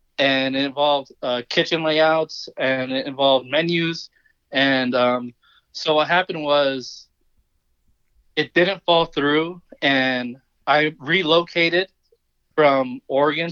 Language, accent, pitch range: English, American, 135-170 Hz